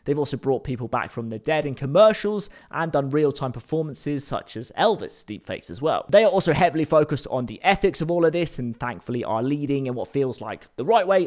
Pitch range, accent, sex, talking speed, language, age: 125-170 Hz, British, male, 230 wpm, English, 20-39